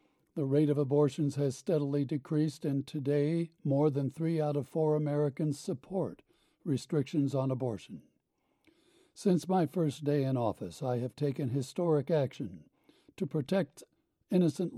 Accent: American